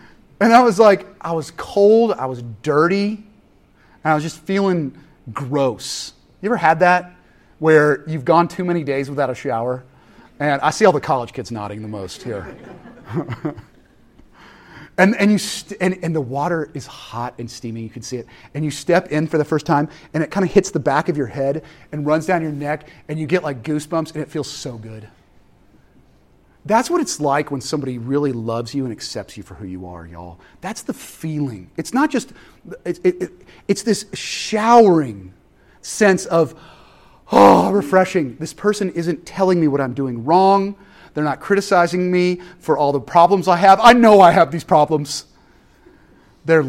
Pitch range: 125-180 Hz